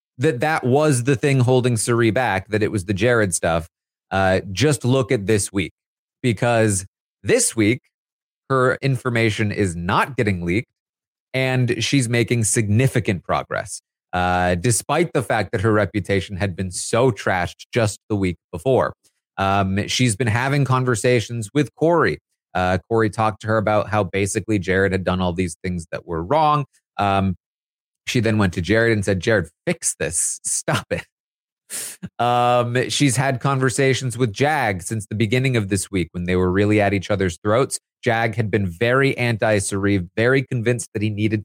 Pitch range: 100-125 Hz